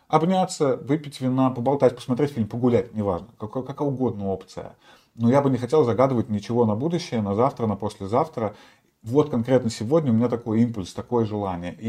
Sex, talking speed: male, 170 wpm